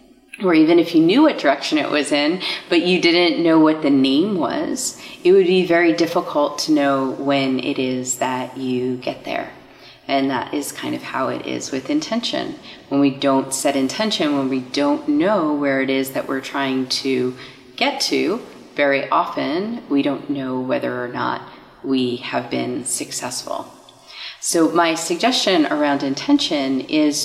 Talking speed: 170 wpm